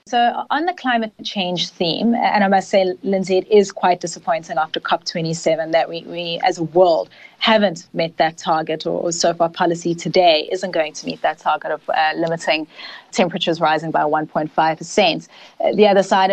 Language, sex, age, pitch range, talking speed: English, female, 30-49, 165-195 Hz, 185 wpm